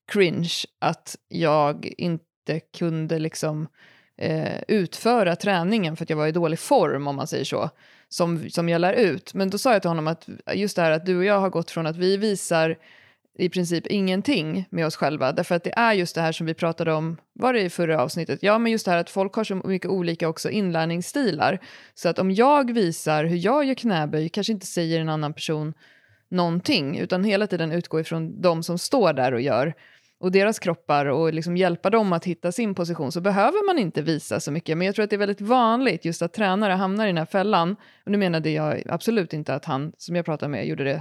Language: Swedish